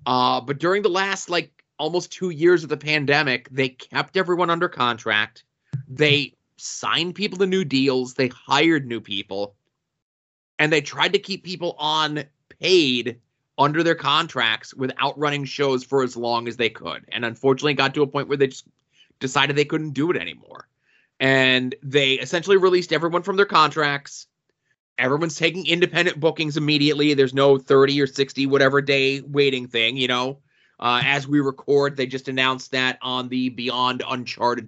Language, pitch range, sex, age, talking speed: English, 125-160 Hz, male, 20-39, 170 wpm